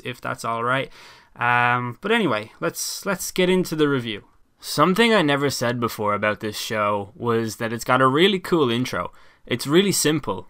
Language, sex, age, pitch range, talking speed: English, male, 10-29, 110-135 Hz, 170 wpm